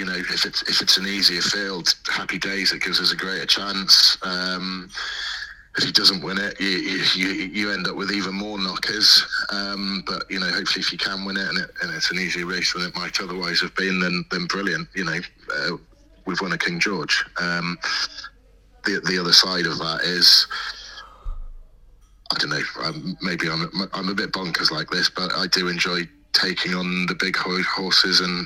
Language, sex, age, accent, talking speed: English, male, 30-49, British, 200 wpm